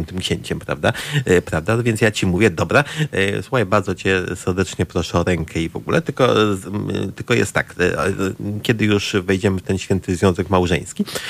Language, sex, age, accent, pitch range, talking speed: Polish, male, 30-49, native, 90-110 Hz, 165 wpm